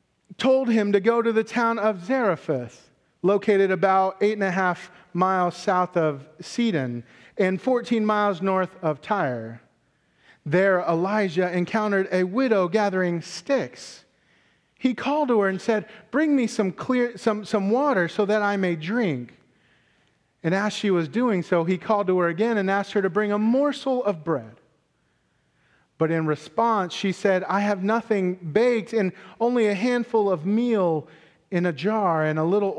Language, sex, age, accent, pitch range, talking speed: English, male, 40-59, American, 165-215 Hz, 165 wpm